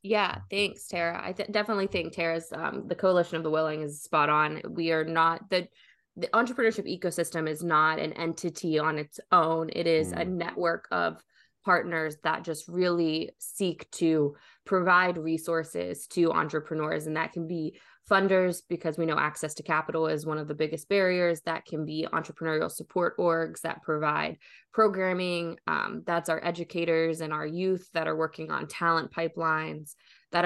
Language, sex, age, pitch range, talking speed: English, female, 20-39, 155-175 Hz, 165 wpm